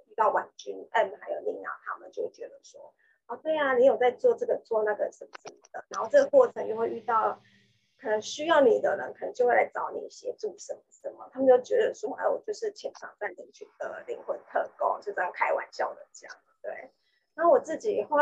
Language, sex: Chinese, female